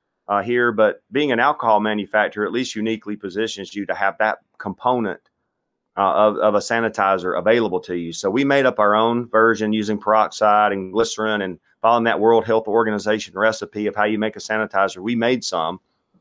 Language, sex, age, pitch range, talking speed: English, male, 40-59, 100-115 Hz, 190 wpm